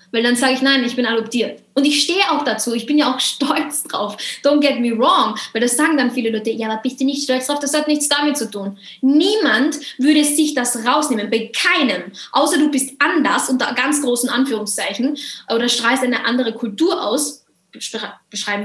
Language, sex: German, female